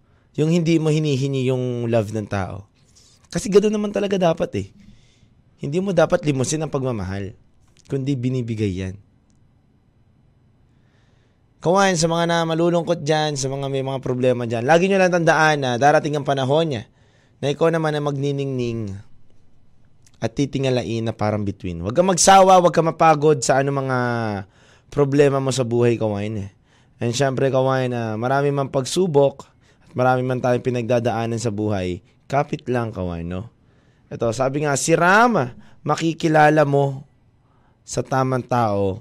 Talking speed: 145 wpm